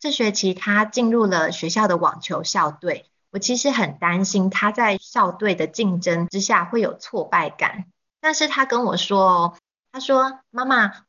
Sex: female